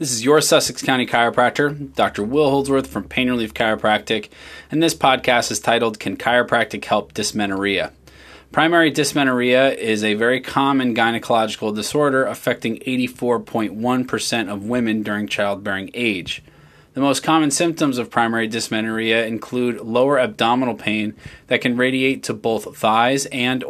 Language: English